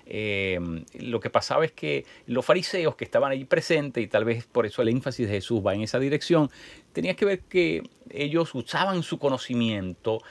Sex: male